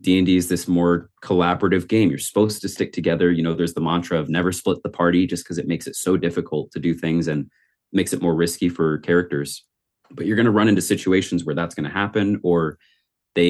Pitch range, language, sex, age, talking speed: 85-100 Hz, English, male, 30-49, 235 wpm